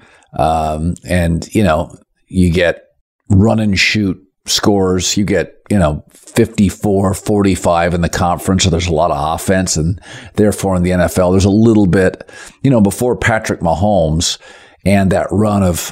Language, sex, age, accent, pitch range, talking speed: English, male, 50-69, American, 90-110 Hz, 160 wpm